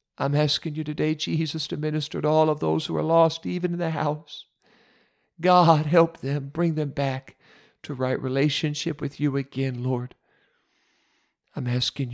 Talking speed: 165 wpm